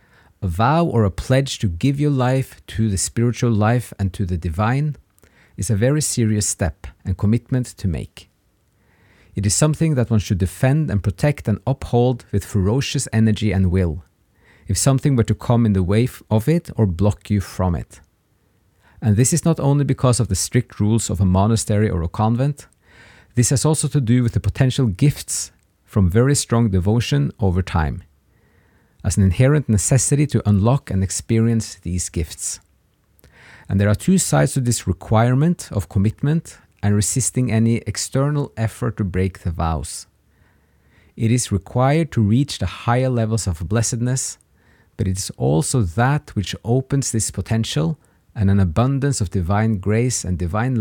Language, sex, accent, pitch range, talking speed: English, male, Norwegian, 95-130 Hz, 170 wpm